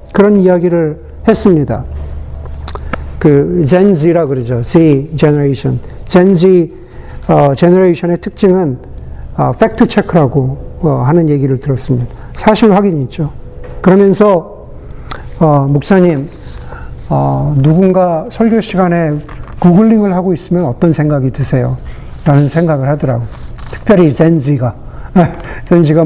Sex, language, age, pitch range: male, Korean, 50-69, 135-185 Hz